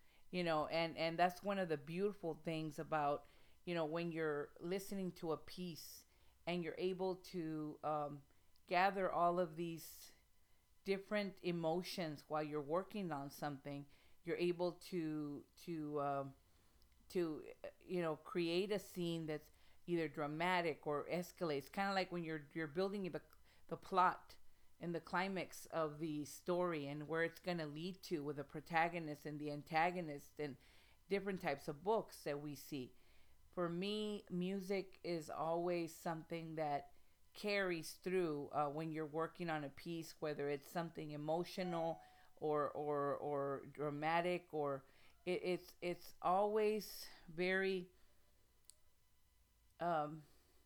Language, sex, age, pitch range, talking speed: English, female, 40-59, 150-180 Hz, 140 wpm